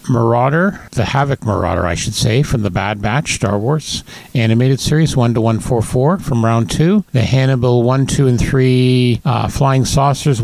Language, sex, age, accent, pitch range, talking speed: English, male, 50-69, American, 115-140 Hz, 185 wpm